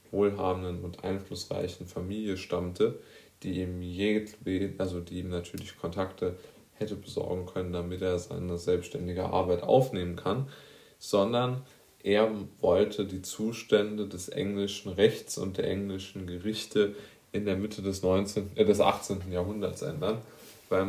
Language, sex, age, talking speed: German, male, 20-39, 130 wpm